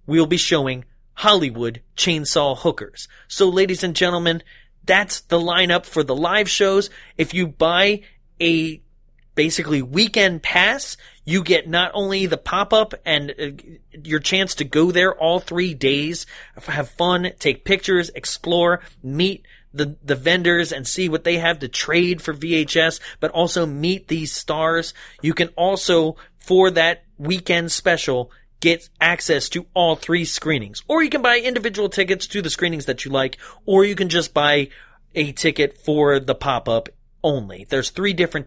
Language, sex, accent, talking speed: English, male, American, 160 wpm